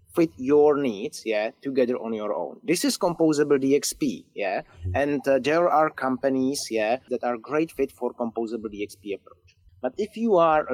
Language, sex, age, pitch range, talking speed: English, male, 30-49, 120-155 Hz, 175 wpm